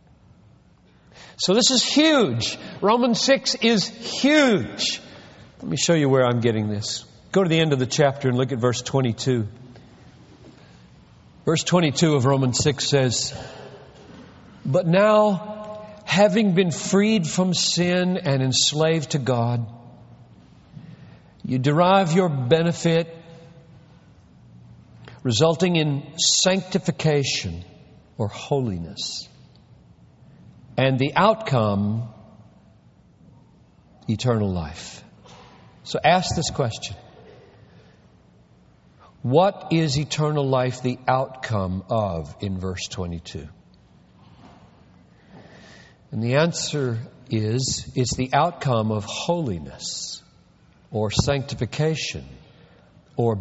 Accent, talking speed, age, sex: American, 95 wpm, 50-69, male